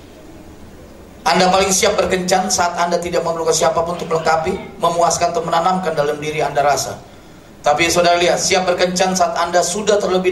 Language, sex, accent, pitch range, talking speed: Indonesian, male, native, 150-195 Hz, 155 wpm